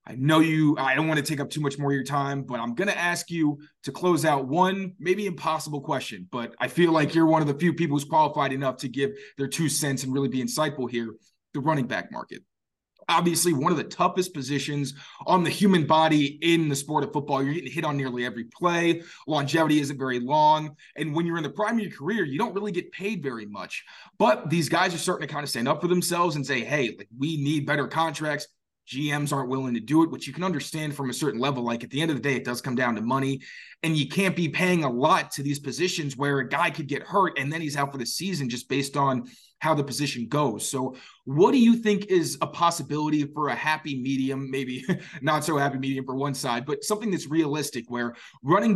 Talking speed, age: 245 wpm, 20-39